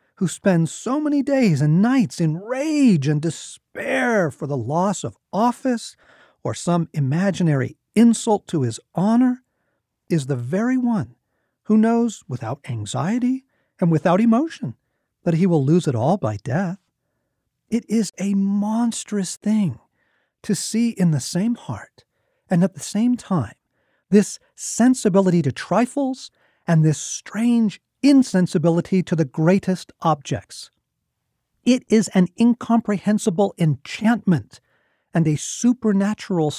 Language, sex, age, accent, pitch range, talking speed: English, male, 40-59, American, 150-225 Hz, 130 wpm